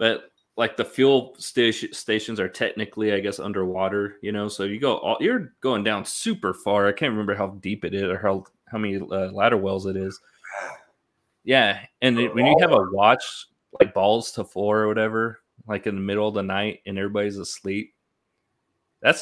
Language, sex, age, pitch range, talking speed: English, male, 20-39, 100-125 Hz, 195 wpm